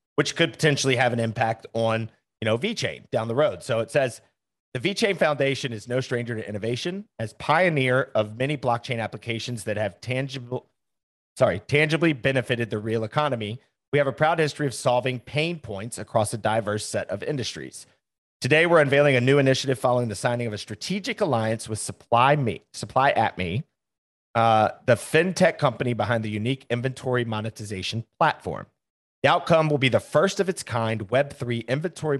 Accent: American